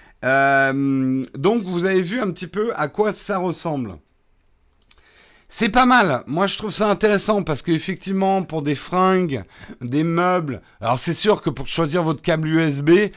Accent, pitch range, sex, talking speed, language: French, 130-185 Hz, male, 165 wpm, French